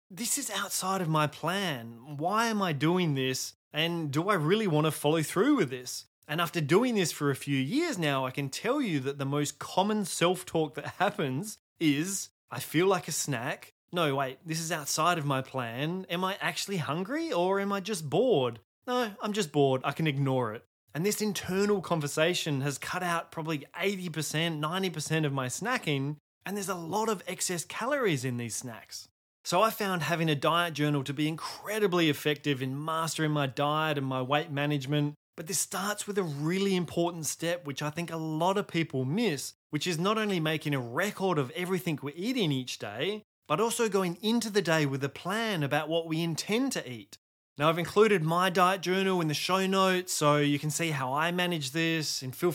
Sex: male